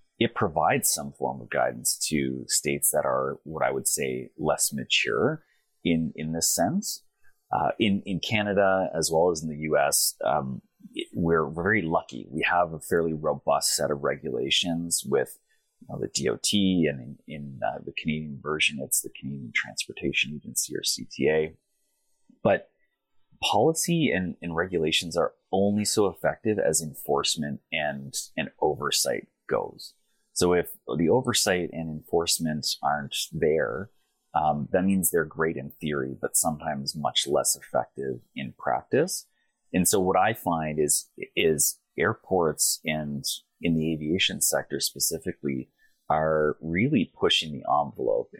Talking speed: 145 wpm